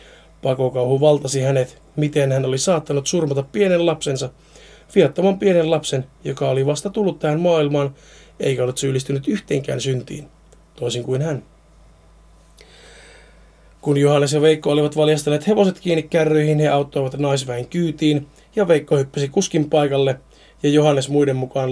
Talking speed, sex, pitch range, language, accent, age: 135 wpm, male, 135-170 Hz, Finnish, native, 30-49